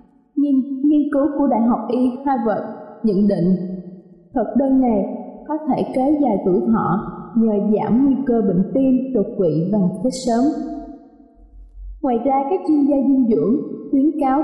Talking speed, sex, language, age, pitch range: 160 wpm, female, Vietnamese, 20-39, 215-270 Hz